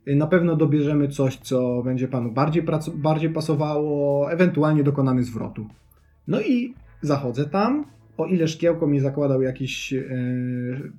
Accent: native